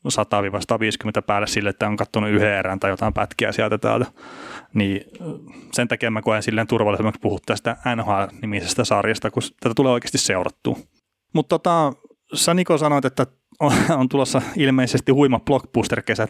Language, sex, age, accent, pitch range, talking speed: Finnish, male, 30-49, native, 105-125 Hz, 145 wpm